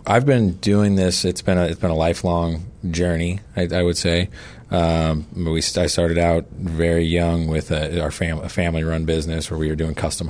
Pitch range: 80-95 Hz